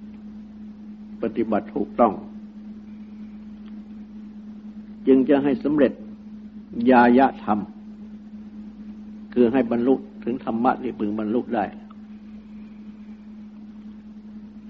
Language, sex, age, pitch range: Thai, male, 60-79, 130-215 Hz